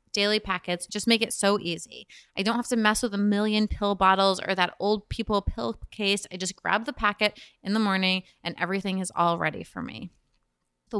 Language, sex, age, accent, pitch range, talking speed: English, female, 20-39, American, 185-220 Hz, 215 wpm